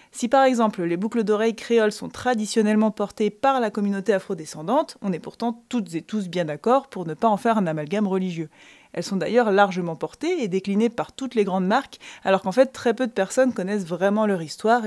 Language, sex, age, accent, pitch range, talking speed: French, female, 20-39, French, 190-240 Hz, 215 wpm